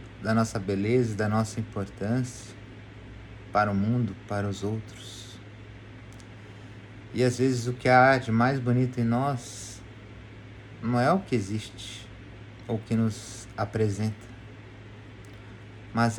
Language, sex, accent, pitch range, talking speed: Portuguese, male, Brazilian, 105-115 Hz, 125 wpm